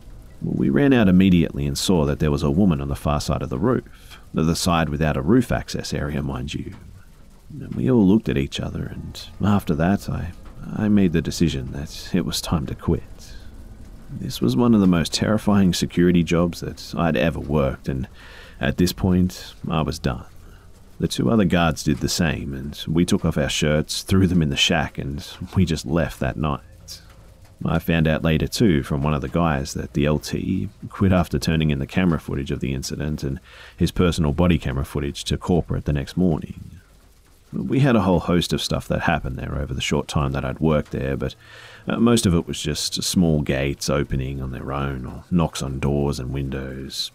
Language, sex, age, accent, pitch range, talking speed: English, male, 40-59, Australian, 70-90 Hz, 205 wpm